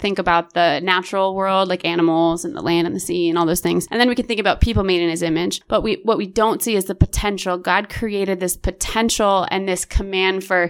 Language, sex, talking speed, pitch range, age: English, female, 250 wpm, 180-205 Hz, 20-39